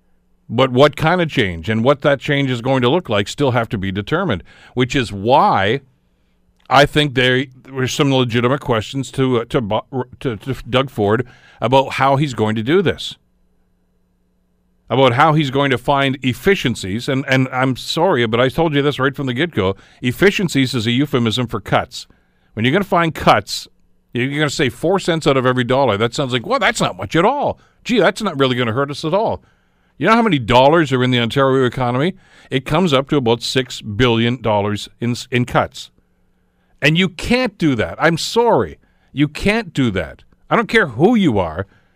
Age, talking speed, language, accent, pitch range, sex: 50-69, 200 wpm, English, American, 110-145 Hz, male